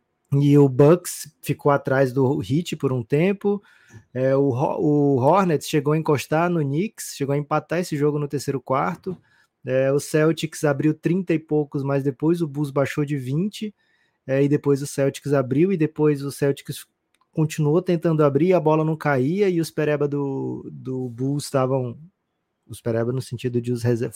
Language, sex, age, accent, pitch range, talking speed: Portuguese, male, 20-39, Brazilian, 125-155 Hz, 180 wpm